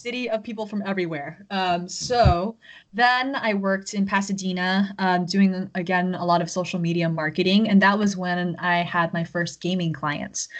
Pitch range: 165-195 Hz